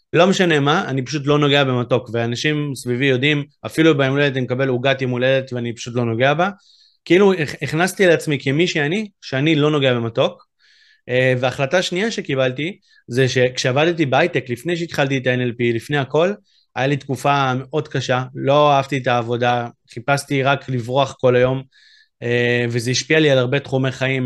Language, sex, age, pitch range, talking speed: Hebrew, male, 20-39, 125-160 Hz, 165 wpm